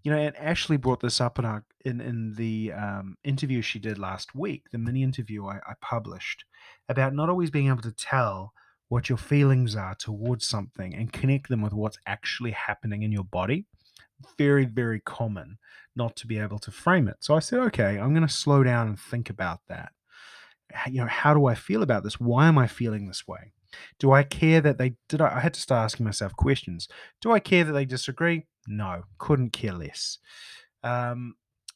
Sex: male